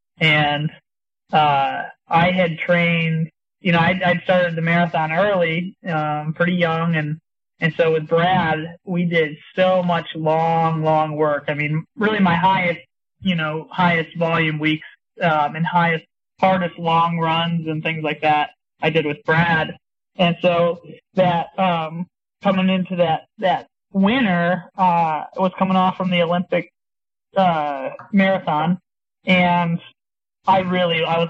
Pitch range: 155-180 Hz